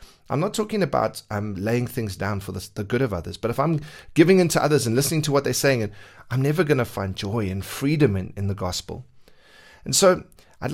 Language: English